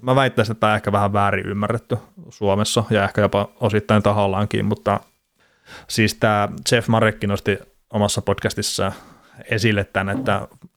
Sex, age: male, 30-49